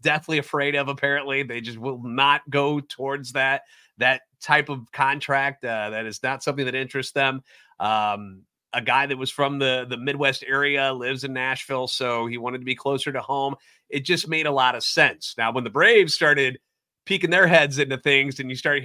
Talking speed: 205 wpm